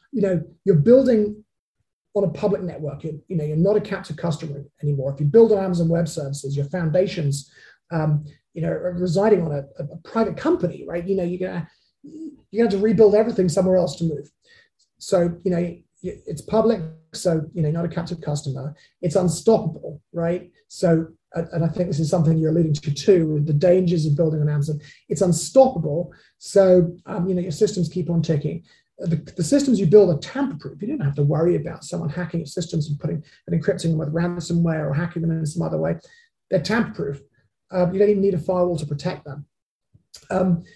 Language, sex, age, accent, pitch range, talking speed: English, male, 30-49, British, 160-195 Hz, 205 wpm